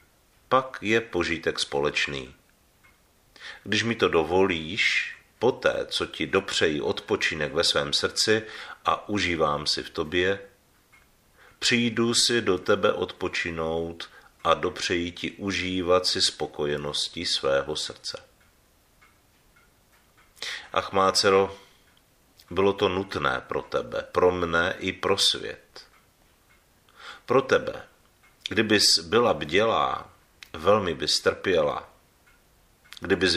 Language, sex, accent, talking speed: Czech, male, native, 100 wpm